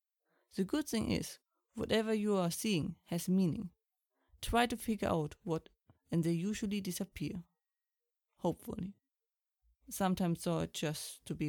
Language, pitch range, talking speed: English, 165-220 Hz, 130 wpm